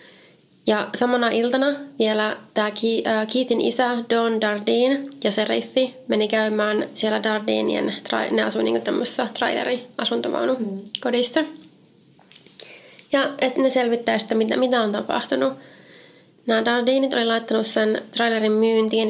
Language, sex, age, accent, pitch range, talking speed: Finnish, female, 20-39, native, 215-245 Hz, 115 wpm